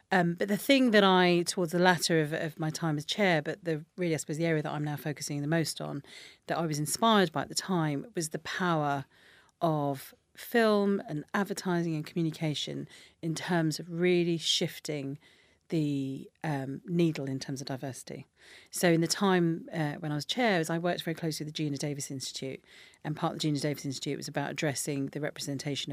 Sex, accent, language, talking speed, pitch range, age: female, British, English, 205 wpm, 140-170 Hz, 40-59